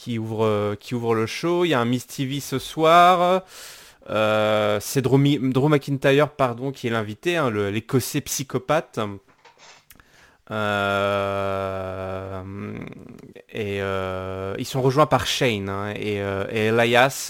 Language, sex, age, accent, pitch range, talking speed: French, male, 20-39, French, 100-135 Hz, 140 wpm